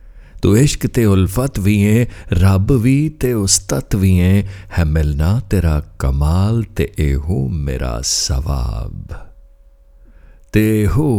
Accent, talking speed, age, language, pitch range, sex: native, 115 wpm, 60-79, Hindi, 80-105 Hz, male